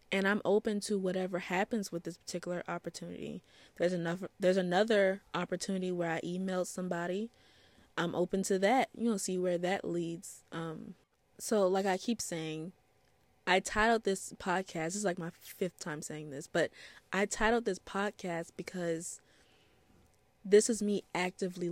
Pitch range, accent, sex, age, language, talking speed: 170-195 Hz, American, female, 20-39, English, 150 wpm